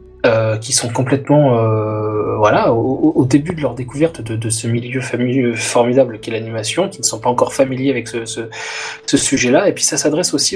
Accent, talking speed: French, 205 wpm